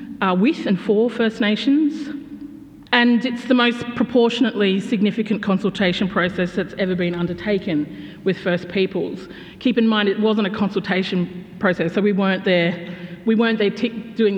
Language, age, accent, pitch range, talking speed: English, 40-59, Australian, 180-215 Hz, 165 wpm